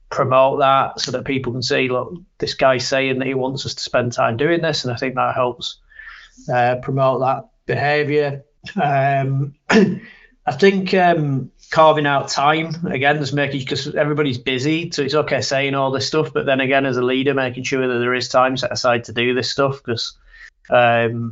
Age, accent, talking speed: 30-49, British, 195 wpm